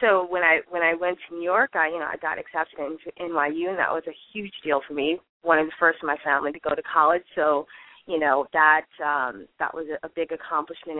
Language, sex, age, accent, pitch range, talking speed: English, female, 20-39, American, 165-245 Hz, 250 wpm